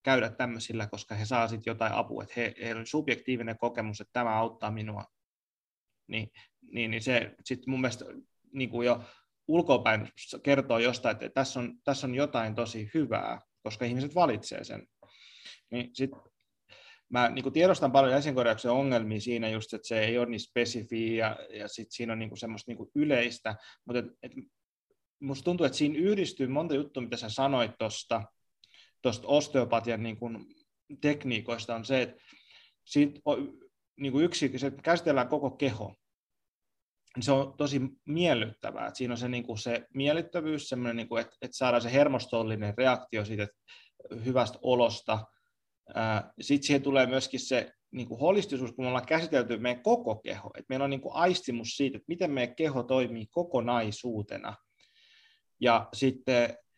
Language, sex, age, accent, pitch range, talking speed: Finnish, male, 20-39, native, 115-140 Hz, 150 wpm